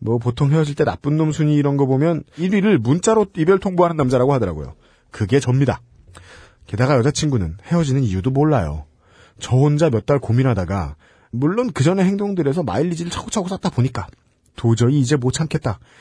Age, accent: 40-59, native